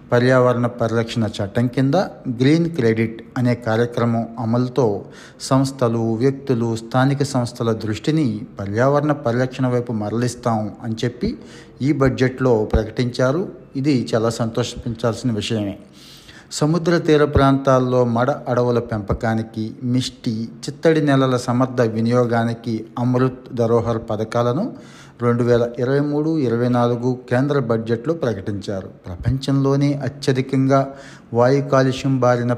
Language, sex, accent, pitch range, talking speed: Telugu, male, native, 115-135 Hz, 100 wpm